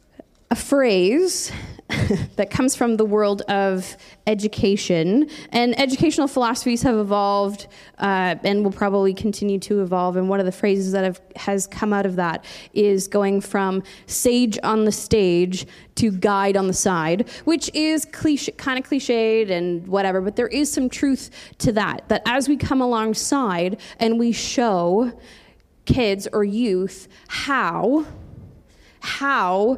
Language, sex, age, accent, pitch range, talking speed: English, female, 20-39, American, 195-235 Hz, 145 wpm